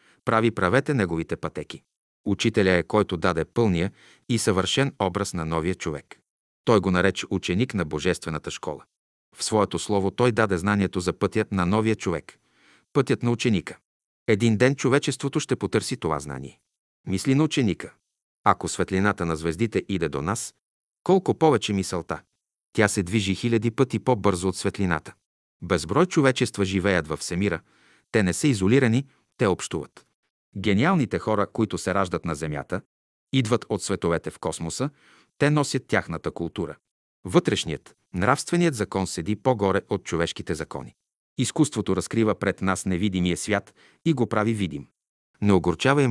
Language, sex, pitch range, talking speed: Bulgarian, male, 90-120 Hz, 145 wpm